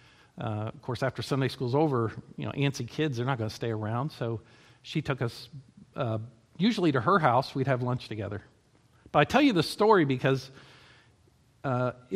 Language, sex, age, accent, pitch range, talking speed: English, male, 50-69, American, 120-150 Hz, 190 wpm